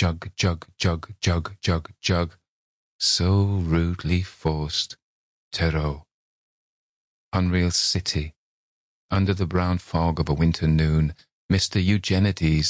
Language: English